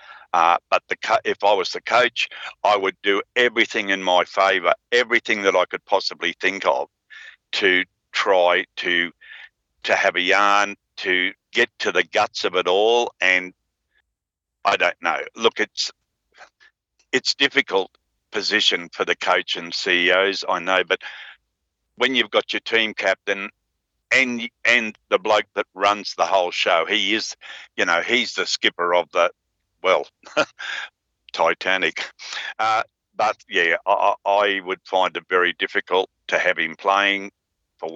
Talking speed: 150 wpm